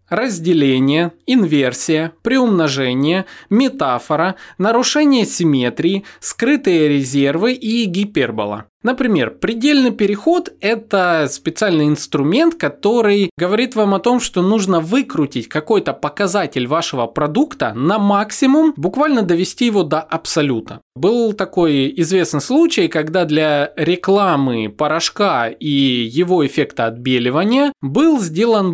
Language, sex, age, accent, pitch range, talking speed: Russian, male, 20-39, native, 145-220 Hz, 100 wpm